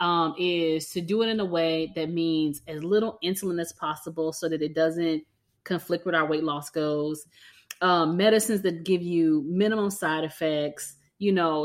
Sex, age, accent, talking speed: female, 30-49, American, 180 wpm